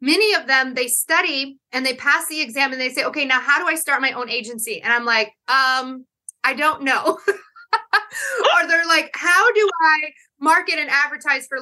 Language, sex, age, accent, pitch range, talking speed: English, female, 30-49, American, 235-290 Hz, 200 wpm